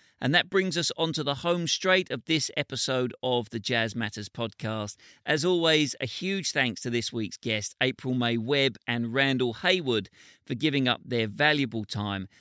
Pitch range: 110-145 Hz